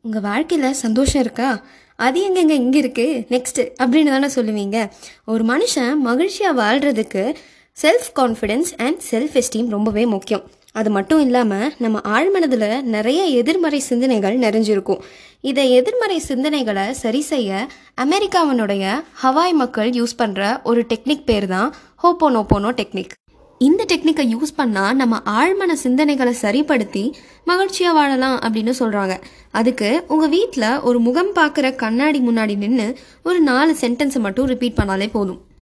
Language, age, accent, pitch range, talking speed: Tamil, 20-39, native, 220-295 Hz, 125 wpm